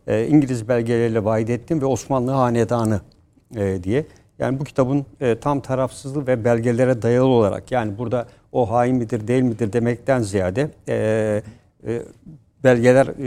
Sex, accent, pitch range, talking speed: male, native, 115-135 Hz, 120 wpm